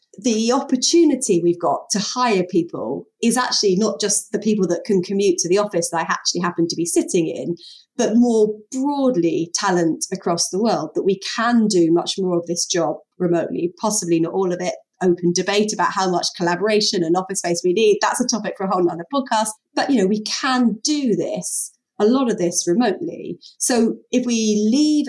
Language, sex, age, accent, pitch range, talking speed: English, female, 30-49, British, 175-220 Hz, 200 wpm